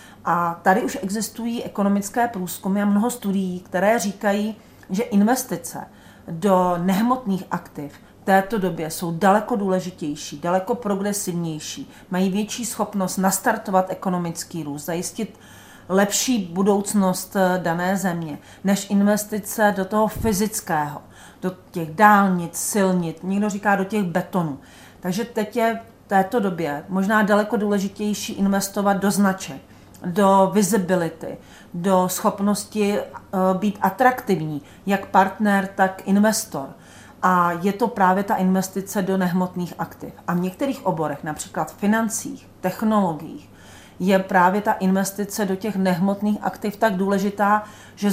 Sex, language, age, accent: female, Czech, 40-59, native